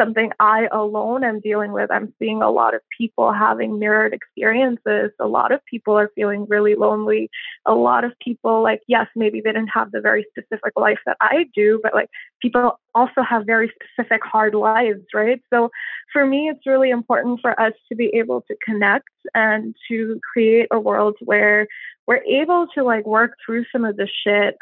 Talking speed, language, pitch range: 195 wpm, English, 215-255 Hz